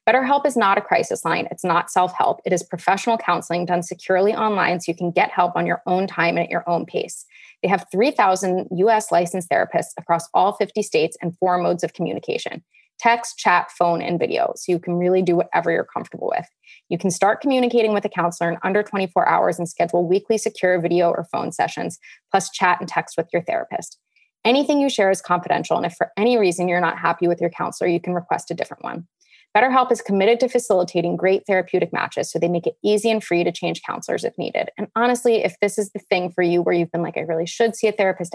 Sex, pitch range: female, 175-220 Hz